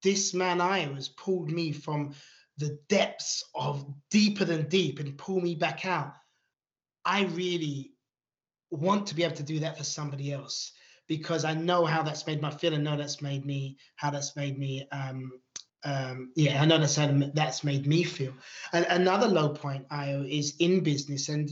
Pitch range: 145-170 Hz